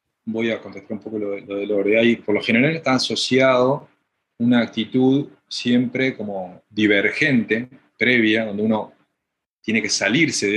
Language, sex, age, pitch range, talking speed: Spanish, male, 20-39, 100-120 Hz, 160 wpm